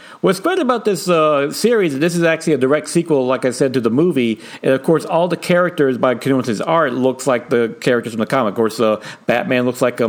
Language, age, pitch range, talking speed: English, 50-69, 125-175 Hz, 250 wpm